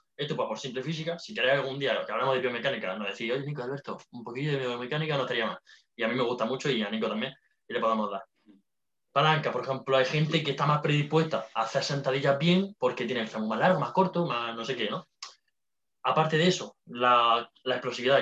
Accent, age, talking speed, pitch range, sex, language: Spanish, 20-39, 235 wpm, 120-155 Hz, male, Spanish